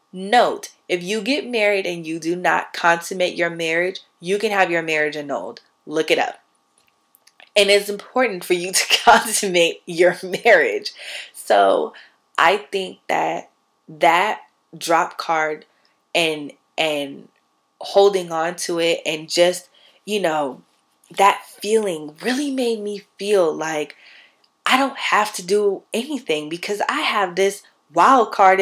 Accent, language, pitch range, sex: American, English, 165-205 Hz, female